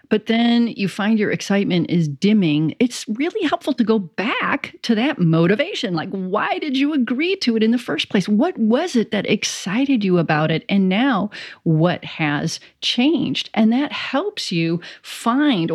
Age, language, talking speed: 40-59, English, 175 wpm